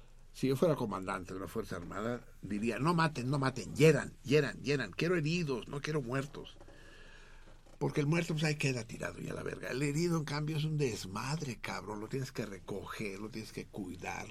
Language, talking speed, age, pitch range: Spanish, 200 wpm, 60-79, 110-155 Hz